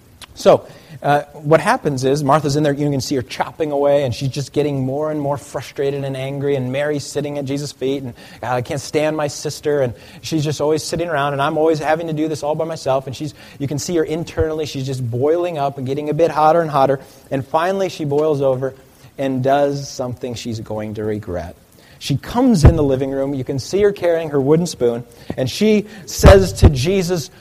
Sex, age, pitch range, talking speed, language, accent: male, 30-49, 120-155 Hz, 220 wpm, English, American